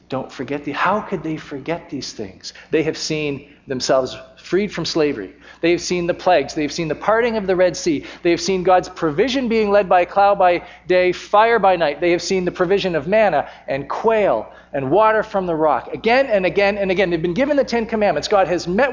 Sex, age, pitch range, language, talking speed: male, 40-59, 130-190 Hz, English, 230 wpm